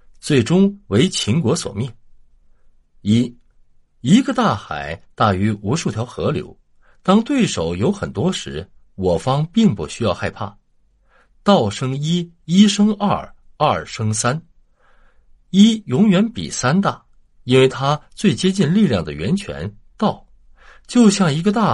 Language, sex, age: Chinese, male, 50-69